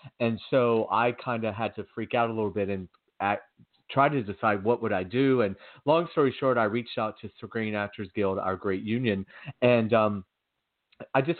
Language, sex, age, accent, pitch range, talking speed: English, male, 40-59, American, 105-125 Hz, 210 wpm